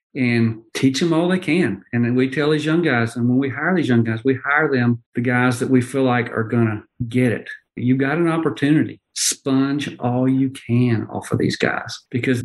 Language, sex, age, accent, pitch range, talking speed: English, male, 50-69, American, 120-140 Hz, 225 wpm